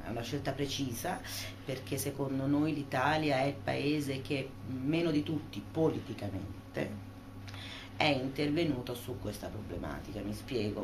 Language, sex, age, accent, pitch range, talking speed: Italian, female, 30-49, native, 100-140 Hz, 125 wpm